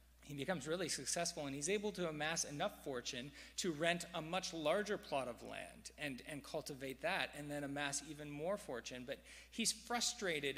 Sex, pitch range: male, 130-175 Hz